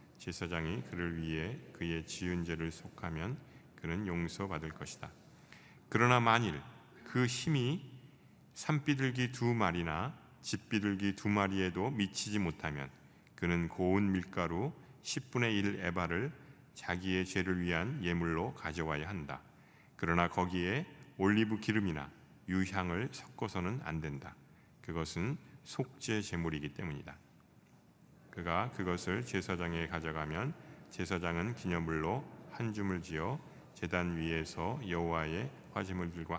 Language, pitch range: Korean, 85-110 Hz